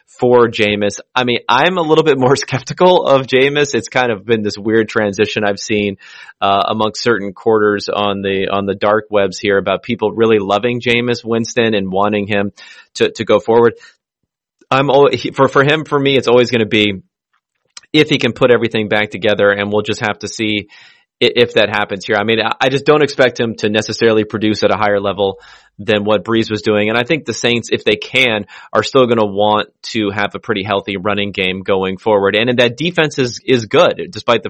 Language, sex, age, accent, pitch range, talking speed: English, male, 30-49, American, 100-120 Hz, 215 wpm